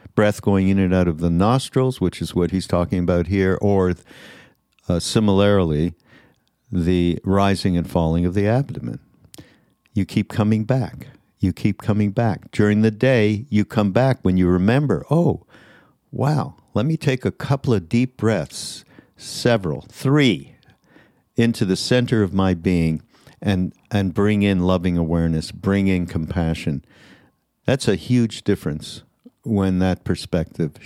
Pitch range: 90-115 Hz